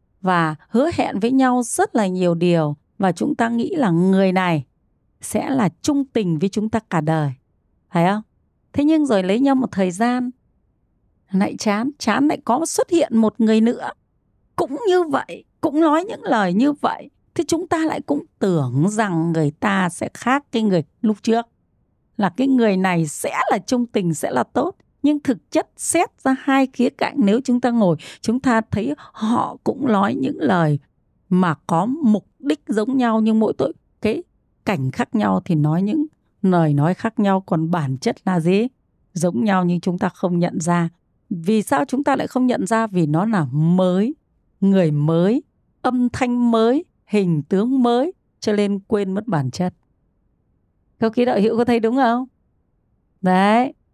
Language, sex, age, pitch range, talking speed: Vietnamese, female, 20-39, 185-260 Hz, 185 wpm